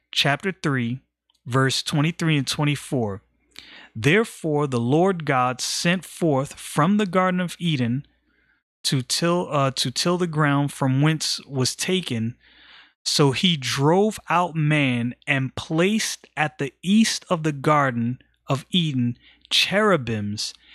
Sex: male